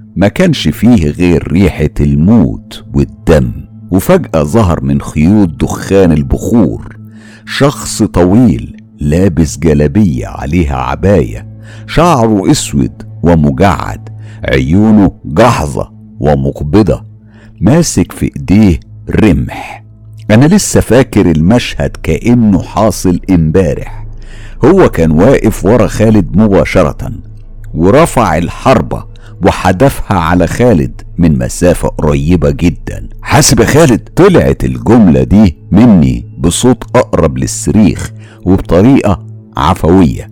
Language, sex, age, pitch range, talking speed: Arabic, male, 60-79, 80-110 Hz, 90 wpm